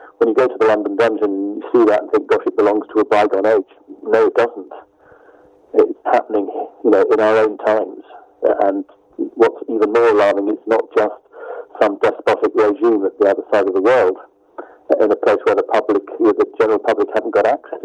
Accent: British